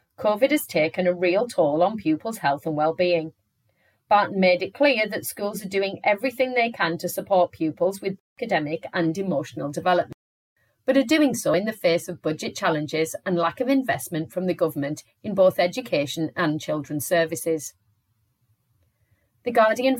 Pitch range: 155-215 Hz